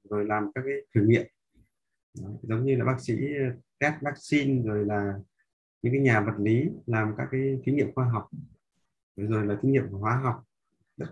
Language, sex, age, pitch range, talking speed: Vietnamese, male, 20-39, 105-130 Hz, 200 wpm